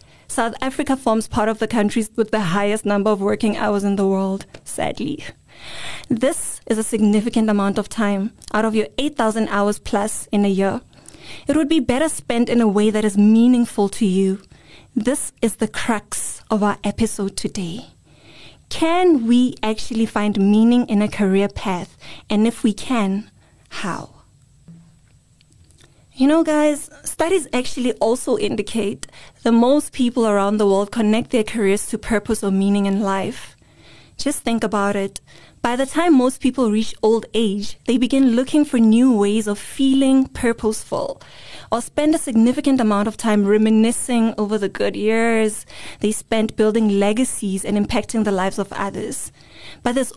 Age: 20-39